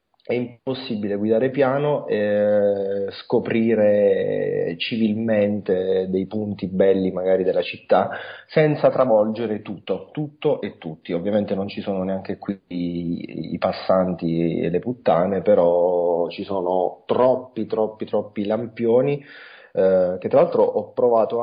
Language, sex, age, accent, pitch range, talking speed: Italian, male, 30-49, native, 100-130 Hz, 120 wpm